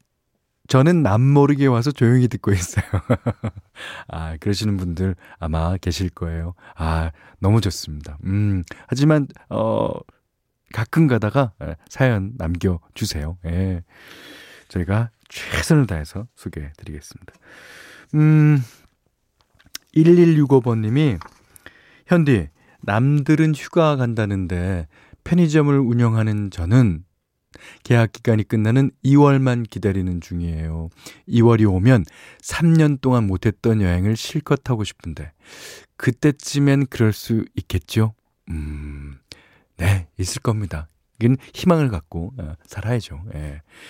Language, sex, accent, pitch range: Korean, male, native, 90-135 Hz